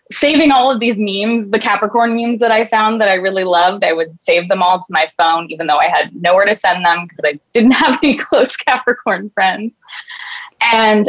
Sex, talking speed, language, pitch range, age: female, 215 wpm, English, 180-245 Hz, 20-39